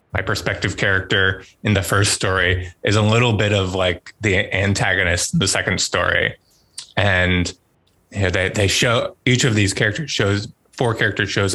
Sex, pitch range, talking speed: male, 95-105 Hz, 170 wpm